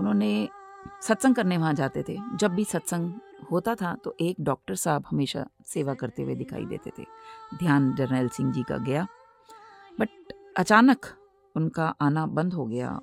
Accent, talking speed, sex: Indian, 160 wpm, female